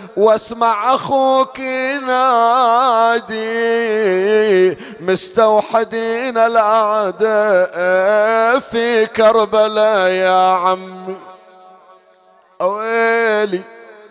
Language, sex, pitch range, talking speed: Arabic, male, 210-235 Hz, 45 wpm